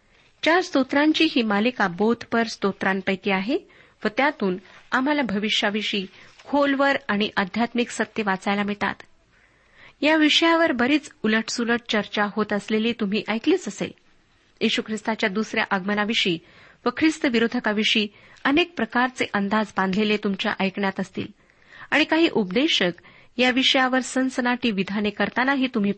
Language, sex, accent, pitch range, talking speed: Marathi, female, native, 205-260 Hz, 115 wpm